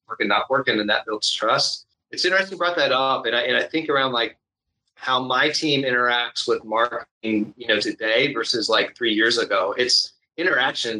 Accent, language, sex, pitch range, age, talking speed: American, English, male, 110-135 Hz, 30-49, 195 wpm